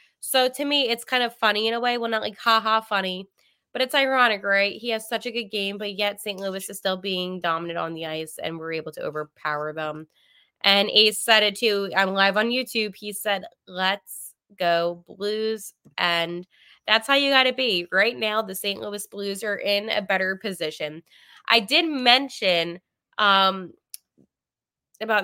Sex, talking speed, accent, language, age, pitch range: female, 190 wpm, American, English, 20-39, 190-245 Hz